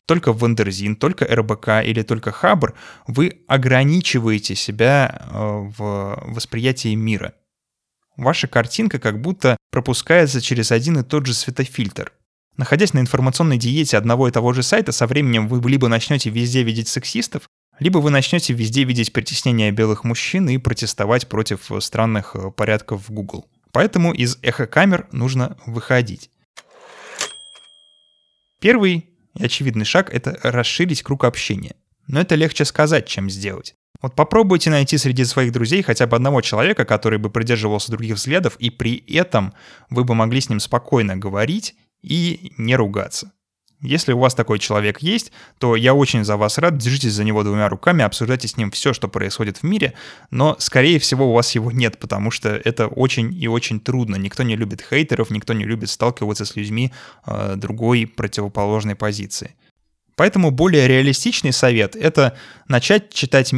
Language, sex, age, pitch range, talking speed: Russian, male, 20-39, 110-140 Hz, 155 wpm